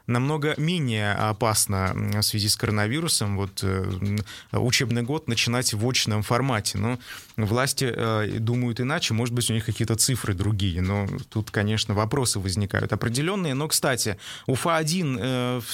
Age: 20-39